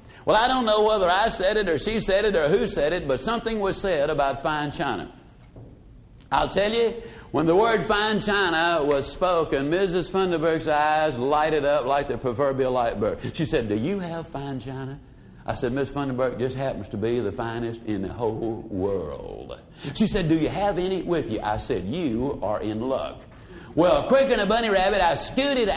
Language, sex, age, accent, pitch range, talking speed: English, male, 60-79, American, 140-215 Hz, 200 wpm